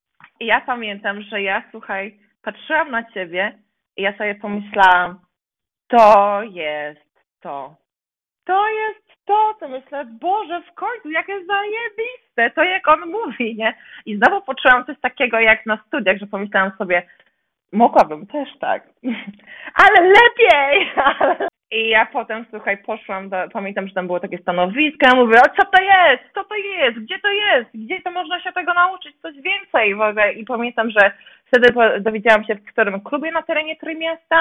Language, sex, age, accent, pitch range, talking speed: Polish, female, 20-39, native, 210-285 Hz, 160 wpm